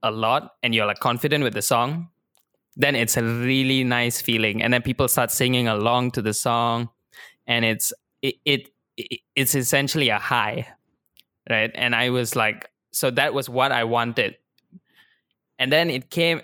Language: English